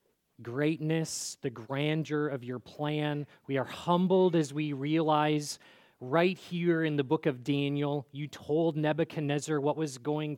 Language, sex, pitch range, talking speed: English, male, 130-170 Hz, 145 wpm